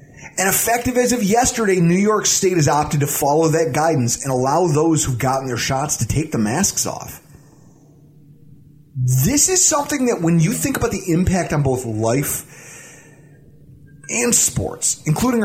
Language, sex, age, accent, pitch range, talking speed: English, male, 30-49, American, 135-175 Hz, 165 wpm